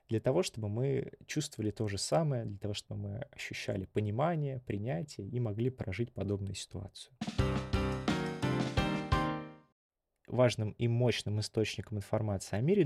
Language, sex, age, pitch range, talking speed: Russian, male, 20-39, 100-130 Hz, 125 wpm